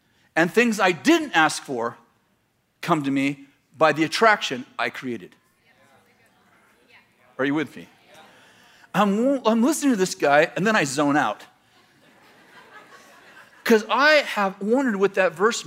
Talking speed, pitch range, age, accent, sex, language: 140 wpm, 145-220 Hz, 40-59, American, male, English